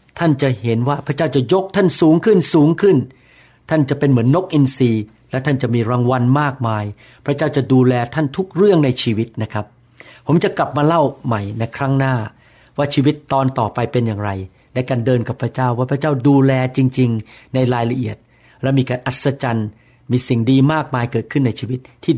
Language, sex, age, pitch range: Thai, male, 60-79, 115-135 Hz